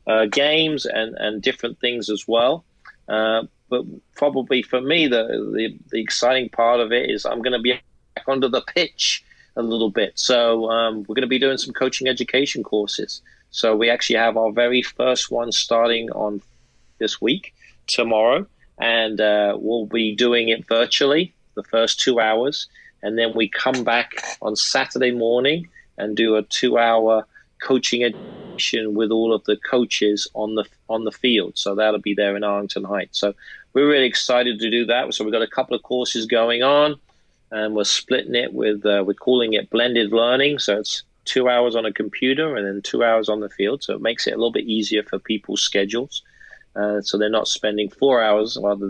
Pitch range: 105-125 Hz